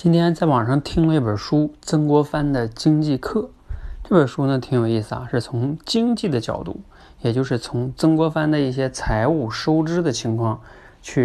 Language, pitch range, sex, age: Chinese, 115-145 Hz, male, 20-39